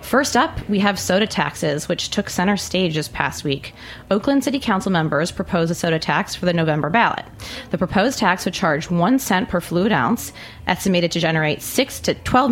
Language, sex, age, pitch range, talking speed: English, female, 30-49, 160-195 Hz, 195 wpm